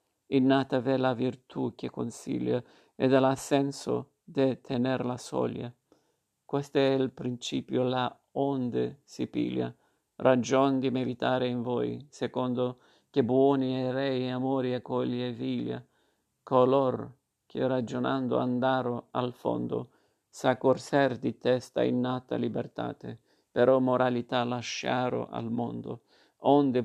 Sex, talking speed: male, 120 wpm